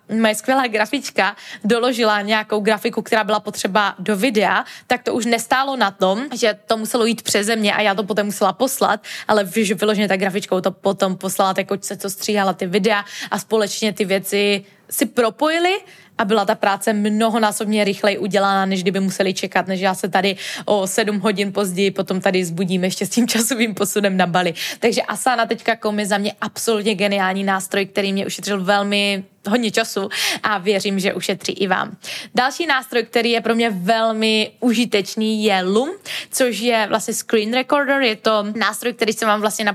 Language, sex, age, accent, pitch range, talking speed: Czech, female, 20-39, native, 200-225 Hz, 185 wpm